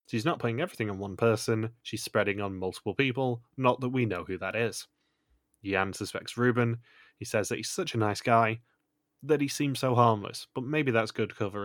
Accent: British